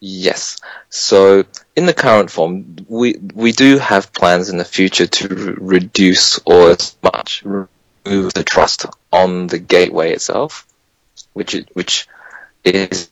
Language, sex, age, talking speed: English, male, 20-39, 140 wpm